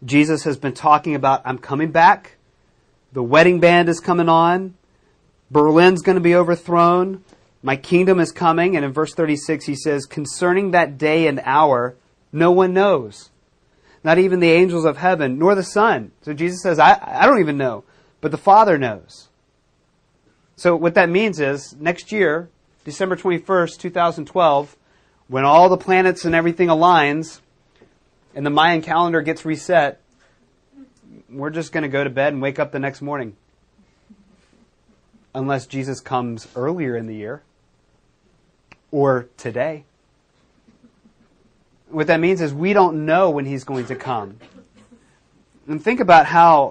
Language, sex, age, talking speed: English, male, 30-49, 155 wpm